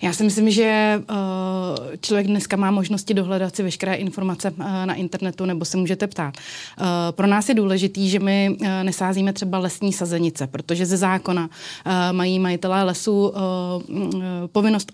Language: Czech